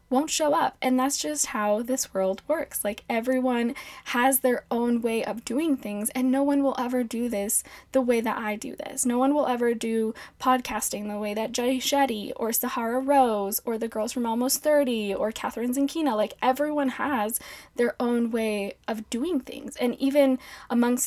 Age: 10-29